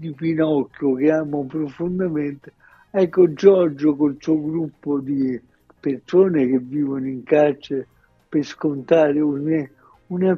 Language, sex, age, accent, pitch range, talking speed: Italian, male, 60-79, native, 150-175 Hz, 115 wpm